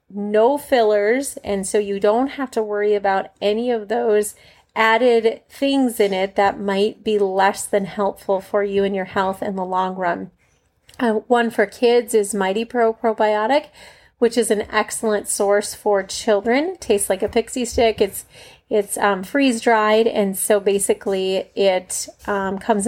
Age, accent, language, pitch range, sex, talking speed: 30-49, American, English, 200-230 Hz, female, 165 wpm